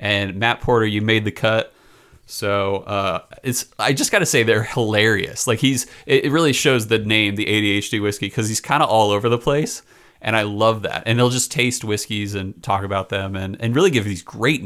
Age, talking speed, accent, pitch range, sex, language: 30-49, 220 wpm, American, 105-130 Hz, male, English